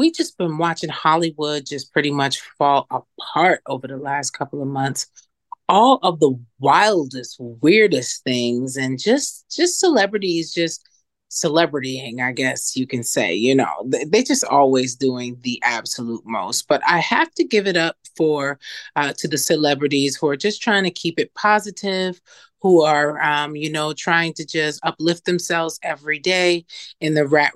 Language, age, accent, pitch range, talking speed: English, 30-49, American, 140-175 Hz, 170 wpm